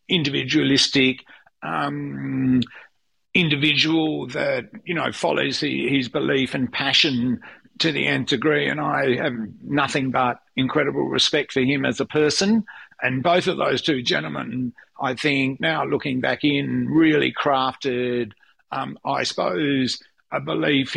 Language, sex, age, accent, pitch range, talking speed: English, male, 50-69, Australian, 130-150 Hz, 130 wpm